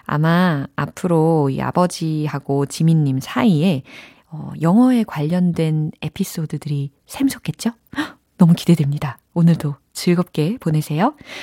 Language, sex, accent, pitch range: Korean, female, native, 150-235 Hz